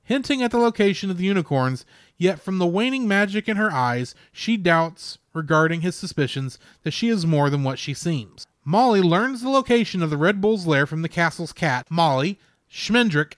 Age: 30-49